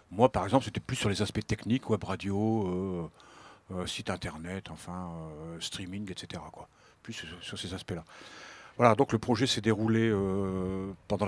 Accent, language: French, French